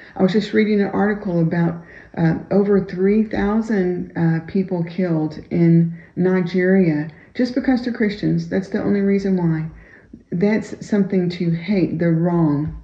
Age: 40-59